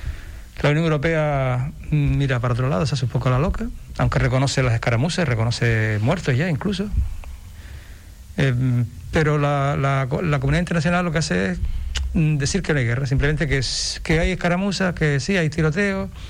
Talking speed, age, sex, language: 175 wpm, 60-79, male, Spanish